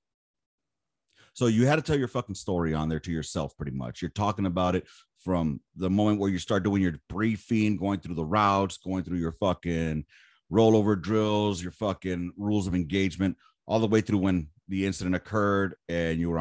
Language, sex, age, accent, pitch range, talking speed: English, male, 30-49, American, 80-105 Hz, 195 wpm